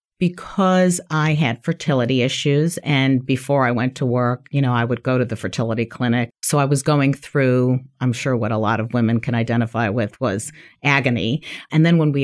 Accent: American